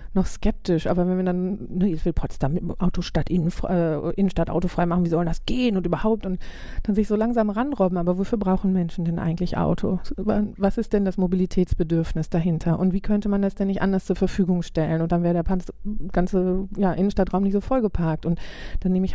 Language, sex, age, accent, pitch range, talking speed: German, female, 40-59, German, 175-200 Hz, 210 wpm